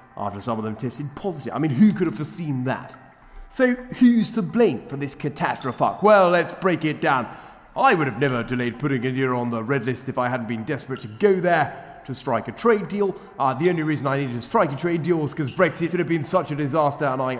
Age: 30-49